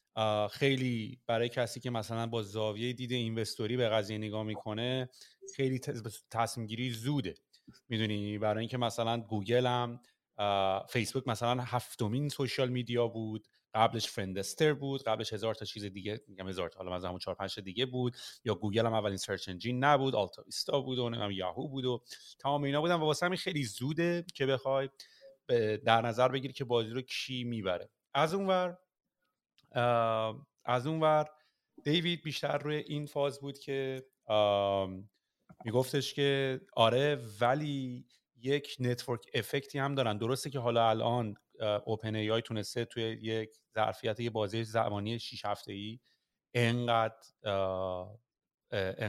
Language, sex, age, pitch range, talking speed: Persian, male, 30-49, 110-135 Hz, 140 wpm